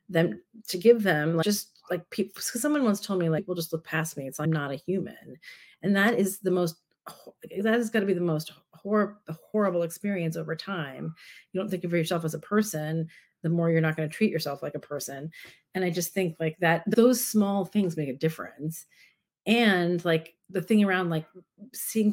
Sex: female